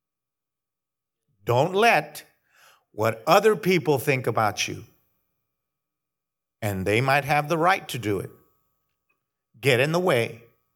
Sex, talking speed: male, 115 wpm